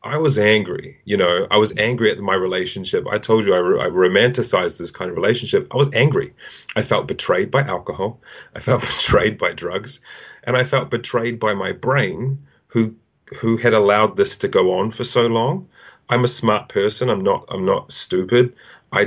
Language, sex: English, male